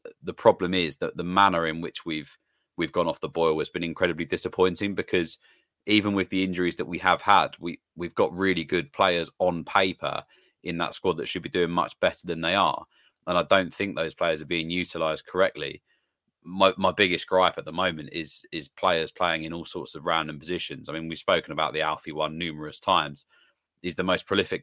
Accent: British